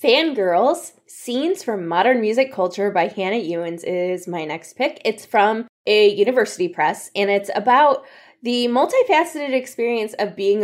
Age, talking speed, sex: 10-29, 145 wpm, female